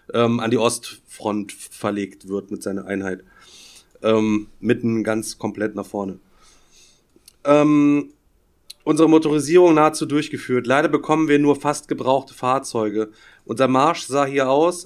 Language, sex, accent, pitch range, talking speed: German, male, German, 120-150 Hz, 125 wpm